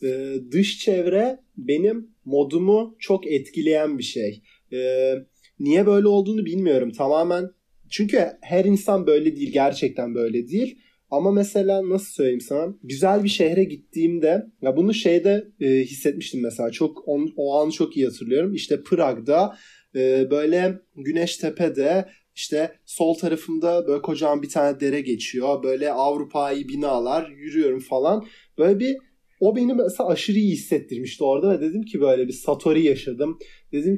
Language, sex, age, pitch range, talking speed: Turkish, male, 30-49, 140-205 Hz, 145 wpm